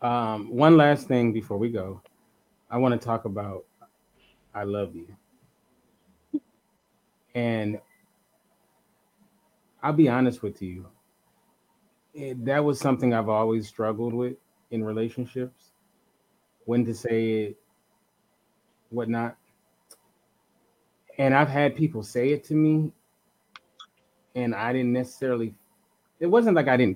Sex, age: male, 30-49